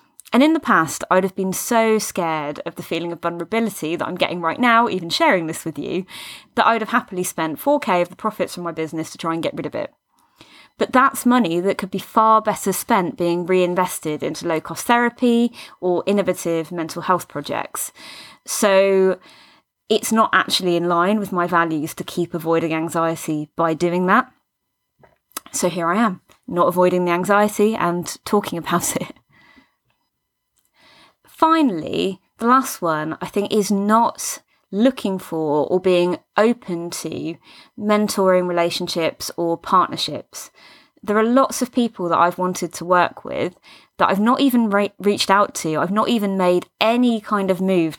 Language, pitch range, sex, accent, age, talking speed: English, 170-220 Hz, female, British, 20-39, 170 wpm